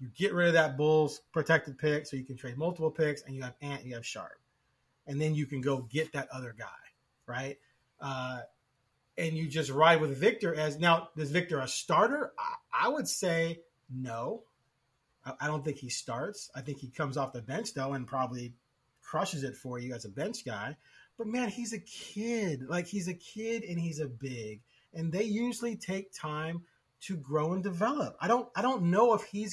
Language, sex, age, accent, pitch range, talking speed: English, male, 30-49, American, 135-185 Hz, 210 wpm